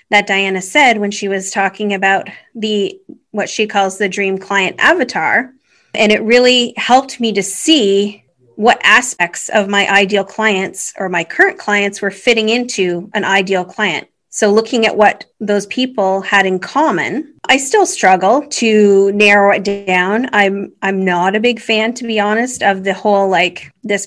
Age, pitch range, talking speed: 30-49, 195-225 Hz, 170 wpm